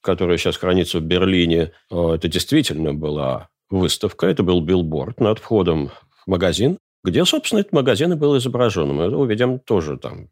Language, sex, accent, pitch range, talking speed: Russian, male, native, 85-120 Hz, 150 wpm